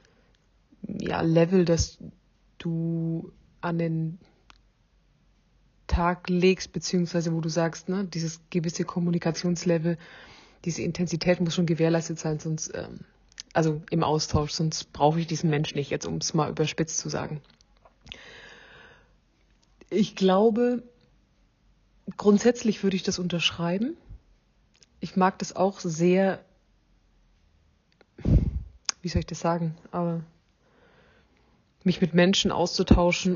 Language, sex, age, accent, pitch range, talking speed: German, female, 30-49, German, 165-185 Hz, 110 wpm